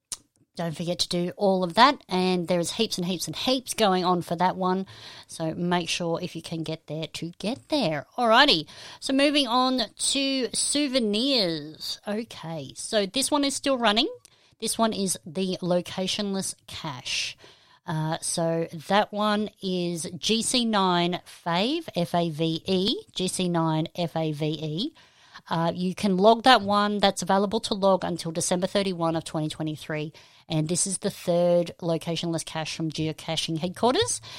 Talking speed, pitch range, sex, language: 150 wpm, 165-210 Hz, female, English